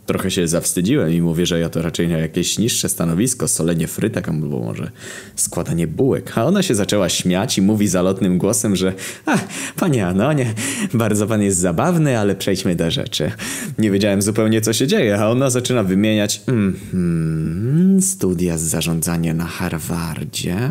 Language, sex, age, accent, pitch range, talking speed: Polish, male, 20-39, native, 85-110 Hz, 160 wpm